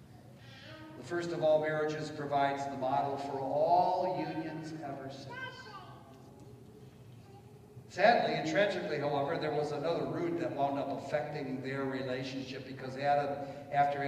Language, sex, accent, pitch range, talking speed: English, male, American, 130-170 Hz, 125 wpm